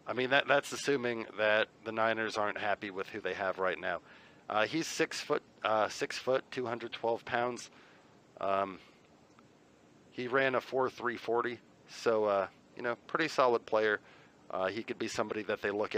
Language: English